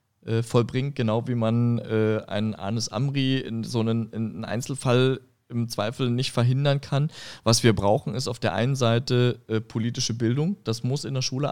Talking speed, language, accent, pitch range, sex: 170 wpm, German, German, 110-130 Hz, male